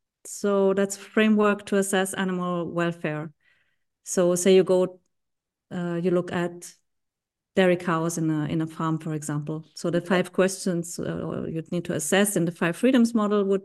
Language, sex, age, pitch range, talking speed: English, female, 30-49, 175-200 Hz, 170 wpm